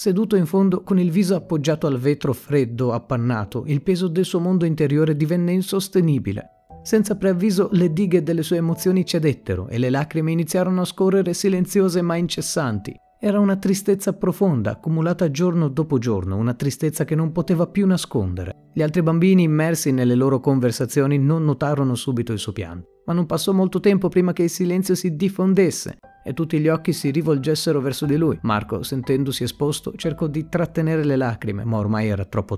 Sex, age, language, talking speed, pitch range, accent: male, 30-49, Italian, 175 wpm, 125-175 Hz, native